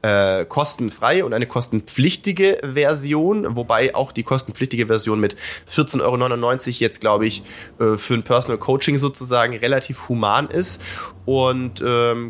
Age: 20-39